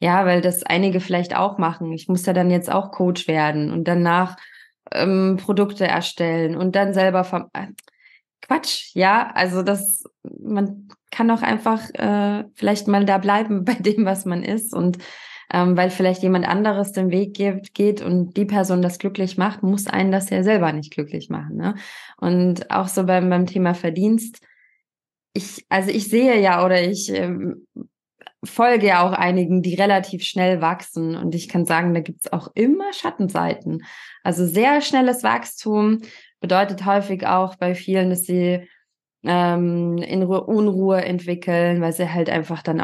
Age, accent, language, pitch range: 20-39, German, German, 175-200 Hz